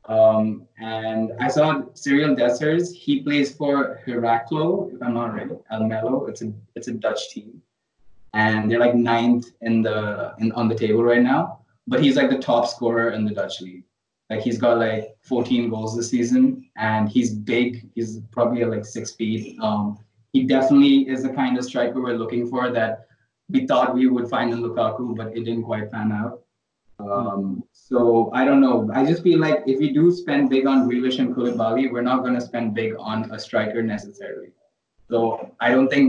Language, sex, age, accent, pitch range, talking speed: English, male, 20-39, Indian, 115-130 Hz, 195 wpm